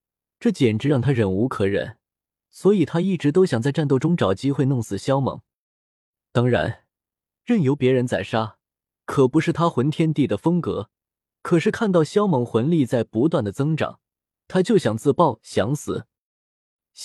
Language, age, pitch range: Chinese, 20-39, 110-160 Hz